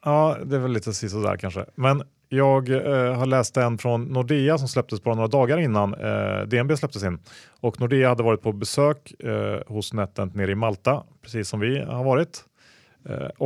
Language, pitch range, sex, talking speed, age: Swedish, 100-125 Hz, male, 195 wpm, 30-49